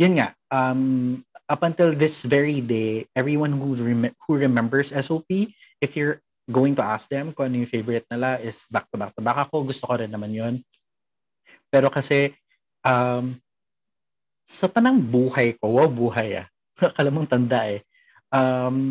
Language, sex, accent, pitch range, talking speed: Filipino, male, native, 120-135 Hz, 155 wpm